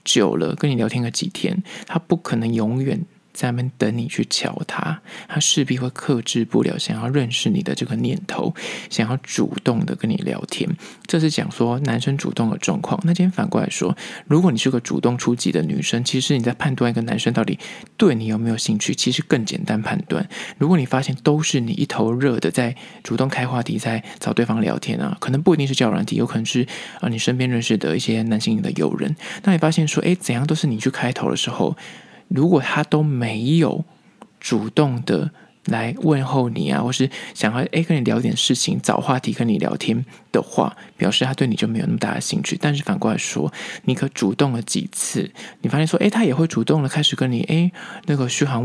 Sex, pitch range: male, 120-165 Hz